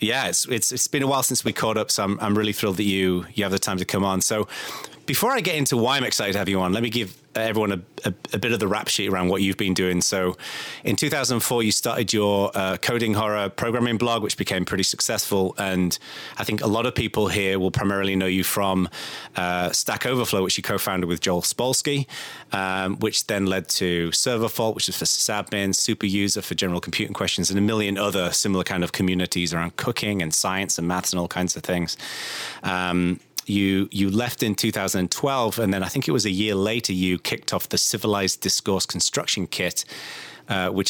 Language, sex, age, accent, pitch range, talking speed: English, male, 30-49, British, 95-110 Hz, 225 wpm